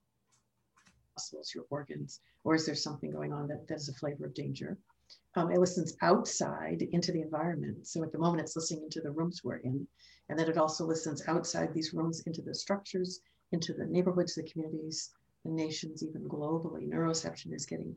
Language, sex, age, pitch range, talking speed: English, female, 50-69, 150-180 Hz, 185 wpm